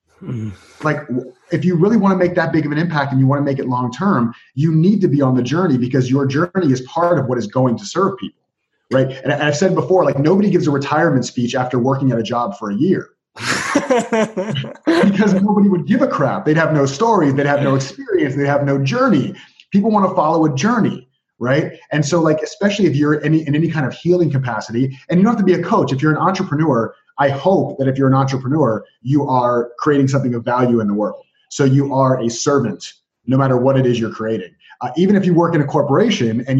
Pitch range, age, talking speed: 125-165 Hz, 30-49, 240 wpm